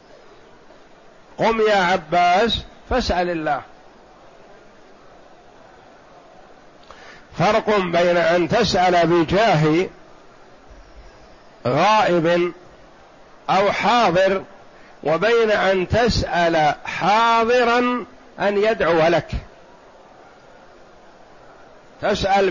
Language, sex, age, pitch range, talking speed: Arabic, male, 50-69, 175-220 Hz, 55 wpm